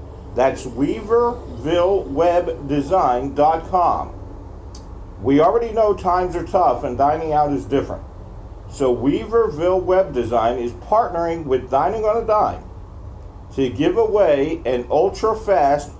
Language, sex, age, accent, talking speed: English, male, 50-69, American, 110 wpm